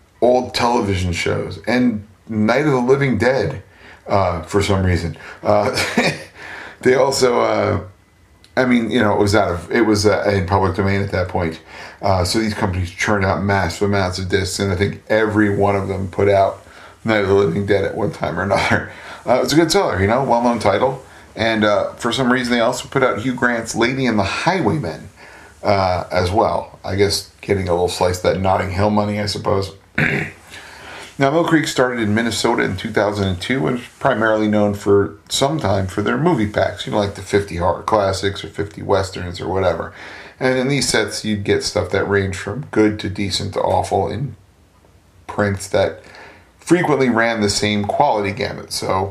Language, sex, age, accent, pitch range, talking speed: English, male, 30-49, American, 95-115 Hz, 195 wpm